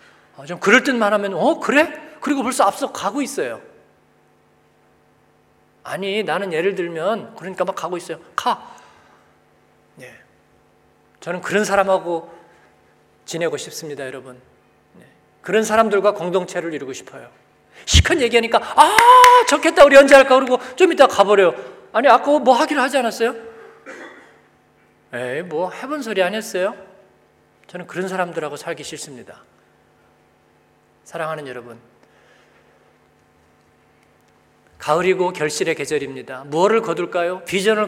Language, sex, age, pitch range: Korean, male, 40-59, 170-235 Hz